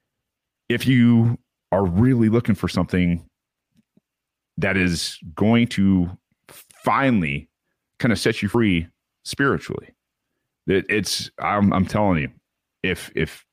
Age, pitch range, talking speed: 30-49, 85-110 Hz, 115 wpm